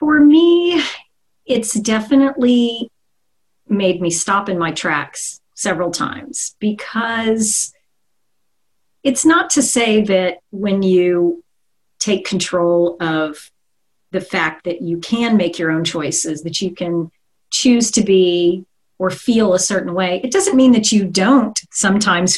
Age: 40-59